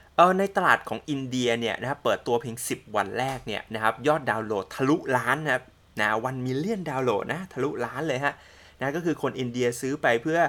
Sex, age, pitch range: male, 20-39, 115-155 Hz